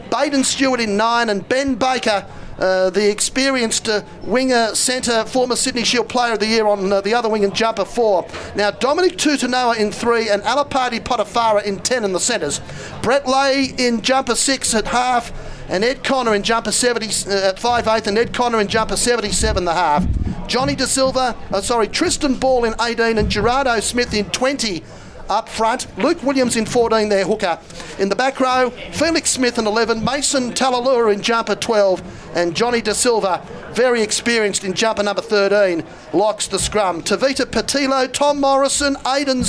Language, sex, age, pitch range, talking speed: English, male, 40-59, 215-275 Hz, 175 wpm